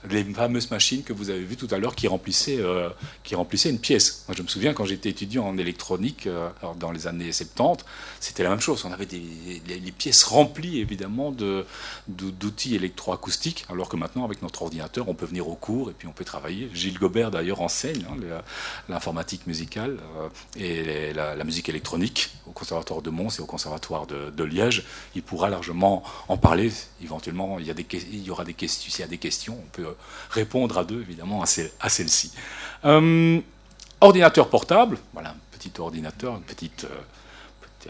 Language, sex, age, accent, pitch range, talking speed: French, male, 40-59, French, 85-110 Hz, 190 wpm